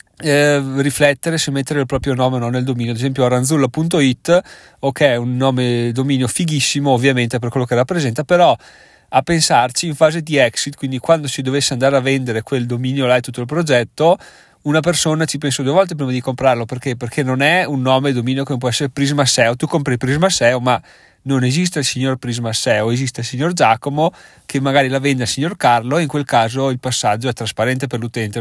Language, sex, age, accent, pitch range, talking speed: Italian, male, 30-49, native, 125-145 Hz, 205 wpm